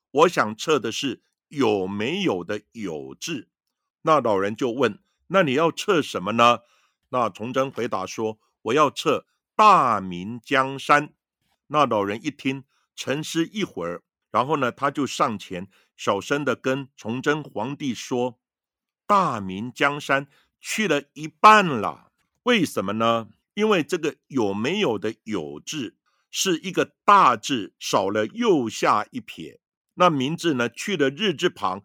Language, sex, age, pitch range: Chinese, male, 60-79, 110-165 Hz